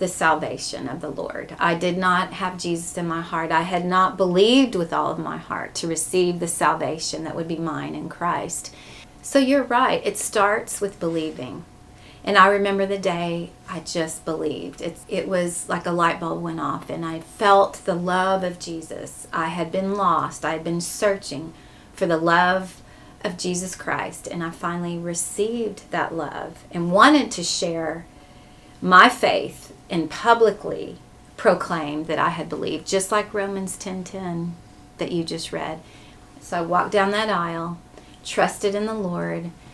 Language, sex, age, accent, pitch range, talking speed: English, female, 30-49, American, 165-190 Hz, 175 wpm